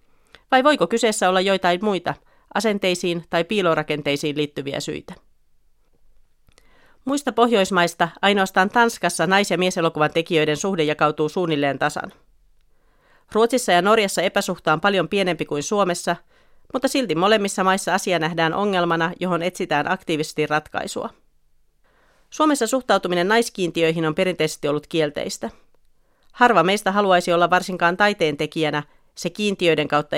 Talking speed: 120 wpm